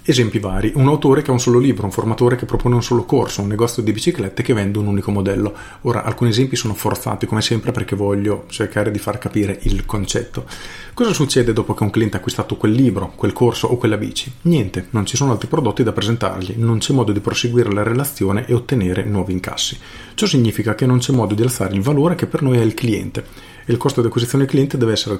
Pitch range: 105-125 Hz